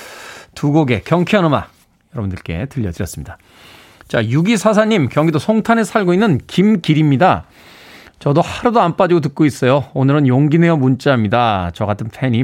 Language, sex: Korean, male